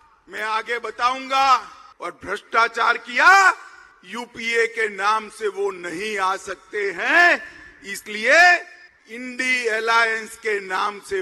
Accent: native